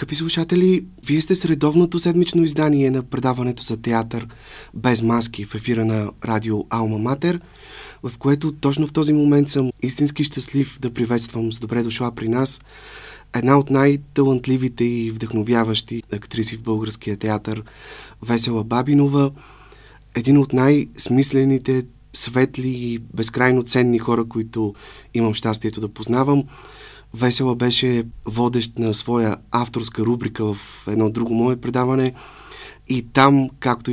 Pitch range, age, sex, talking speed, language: 115-135 Hz, 30-49, male, 130 wpm, Bulgarian